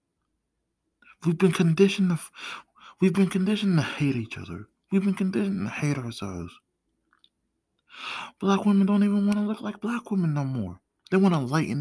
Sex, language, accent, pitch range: male, English, American, 105-155 Hz